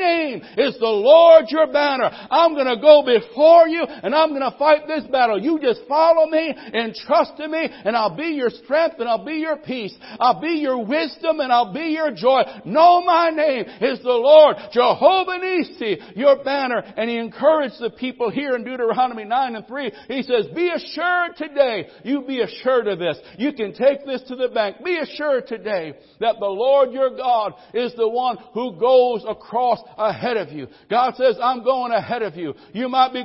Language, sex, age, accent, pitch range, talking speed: English, male, 60-79, American, 235-300 Hz, 200 wpm